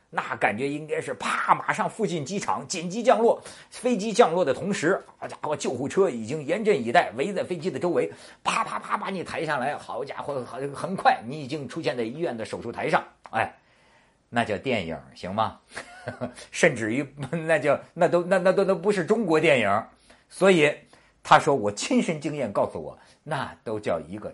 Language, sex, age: Chinese, male, 50-69